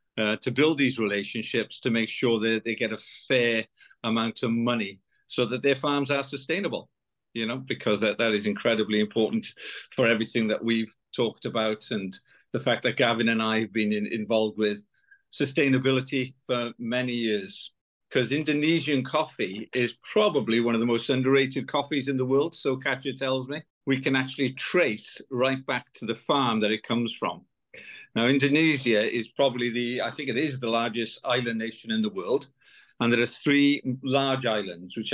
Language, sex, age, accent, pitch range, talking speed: English, male, 50-69, British, 115-140 Hz, 180 wpm